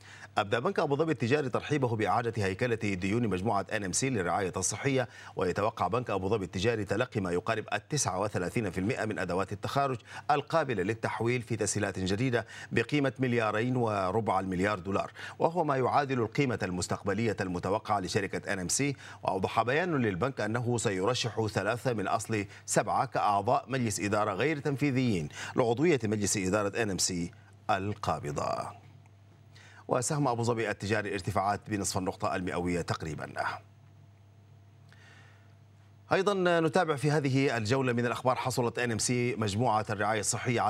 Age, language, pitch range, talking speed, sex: 40-59, Arabic, 100-125 Hz, 135 wpm, male